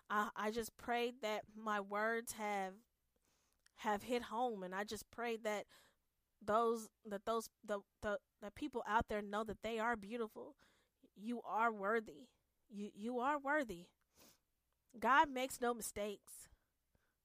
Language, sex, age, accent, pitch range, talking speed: English, female, 10-29, American, 210-265 Hz, 140 wpm